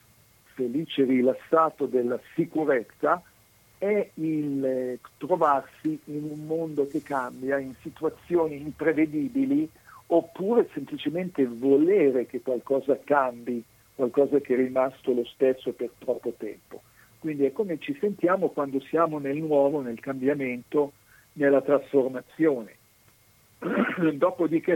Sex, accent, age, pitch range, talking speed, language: male, native, 50-69, 130-160 Hz, 105 wpm, Italian